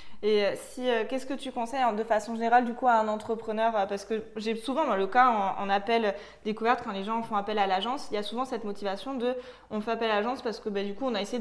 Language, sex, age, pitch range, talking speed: French, female, 20-39, 210-250 Hz, 290 wpm